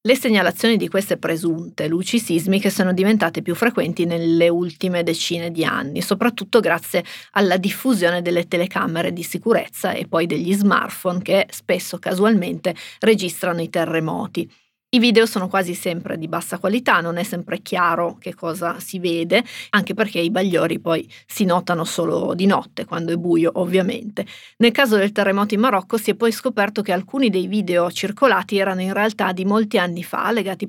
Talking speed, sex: 170 wpm, female